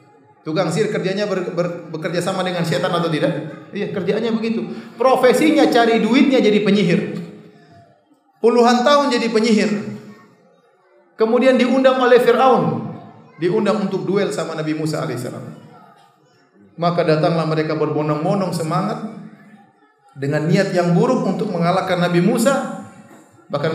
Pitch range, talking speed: 170-220 Hz, 120 wpm